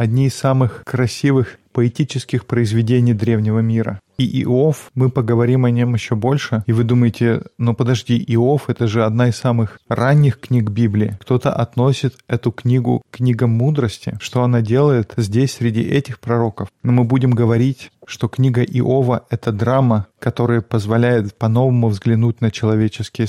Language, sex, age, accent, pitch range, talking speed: Russian, male, 20-39, native, 115-130 Hz, 155 wpm